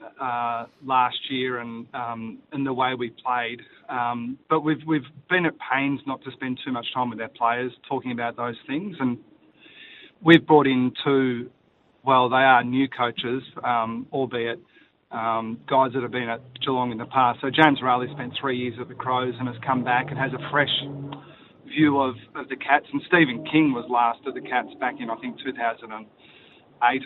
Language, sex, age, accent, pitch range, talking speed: English, male, 30-49, Australian, 120-140 Hz, 195 wpm